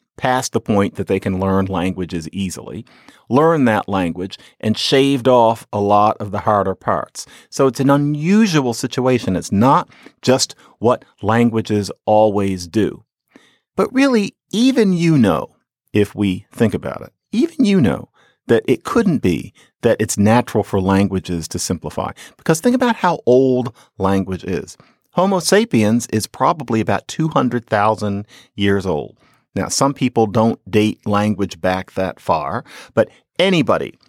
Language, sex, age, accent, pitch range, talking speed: English, male, 50-69, American, 100-145 Hz, 145 wpm